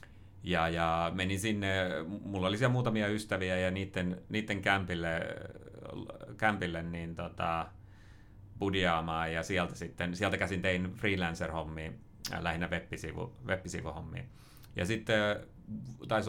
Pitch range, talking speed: 90-105 Hz, 105 wpm